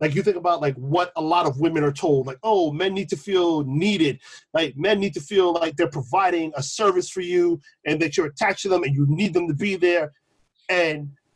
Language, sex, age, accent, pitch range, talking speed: English, male, 40-59, American, 150-195 Hz, 240 wpm